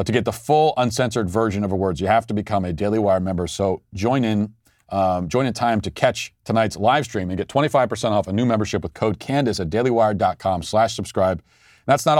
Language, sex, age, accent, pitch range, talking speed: English, male, 40-59, American, 95-120 Hz, 220 wpm